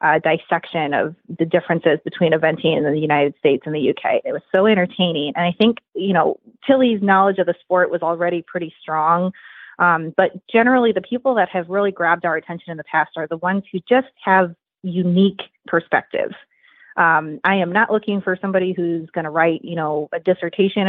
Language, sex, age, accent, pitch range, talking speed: English, female, 20-39, American, 165-195 Hz, 195 wpm